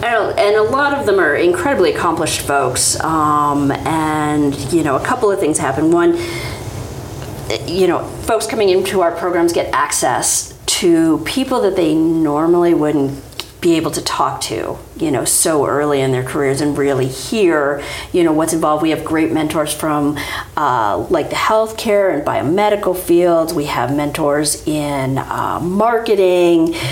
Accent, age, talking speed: American, 40-59, 165 wpm